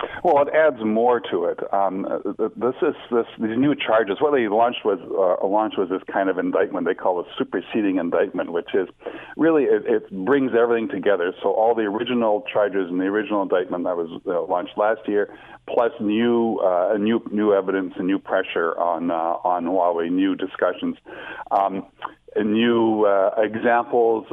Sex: male